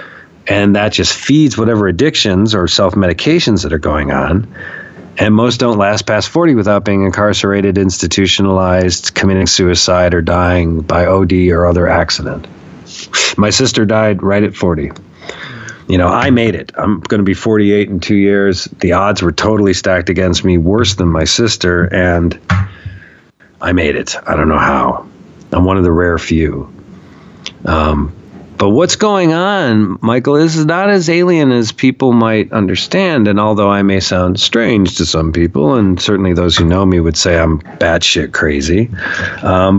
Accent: American